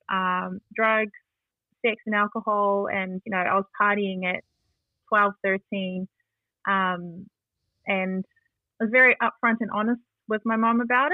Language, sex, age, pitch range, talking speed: English, female, 20-39, 185-215 Hz, 140 wpm